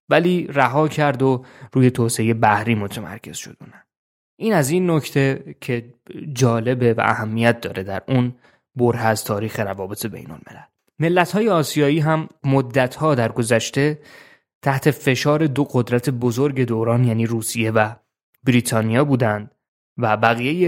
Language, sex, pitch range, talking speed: Persian, male, 115-145 Hz, 130 wpm